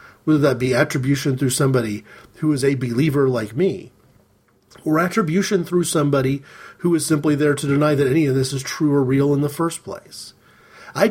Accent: American